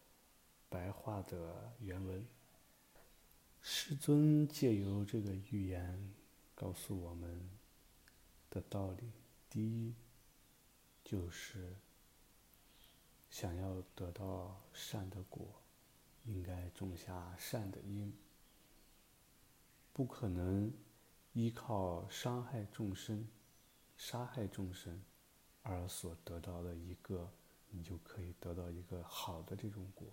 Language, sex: English, male